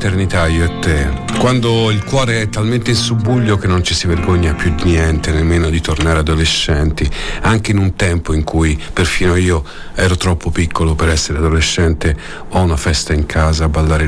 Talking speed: 185 wpm